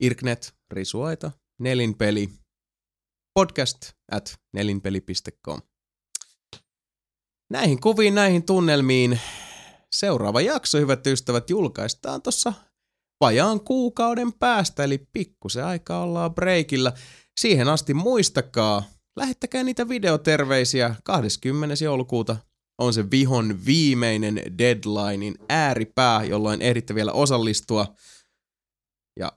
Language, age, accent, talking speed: Finnish, 20-39, native, 90 wpm